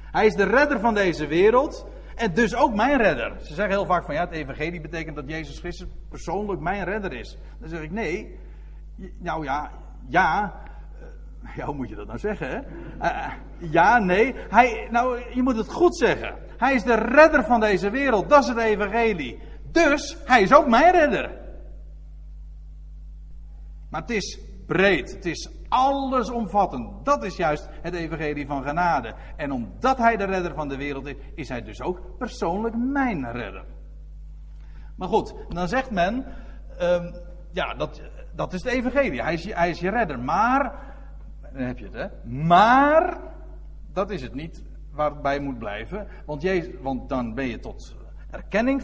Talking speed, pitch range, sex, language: 170 wpm, 140-230 Hz, male, Dutch